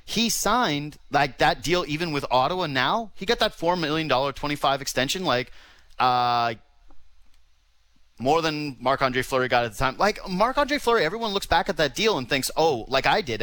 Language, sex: English, male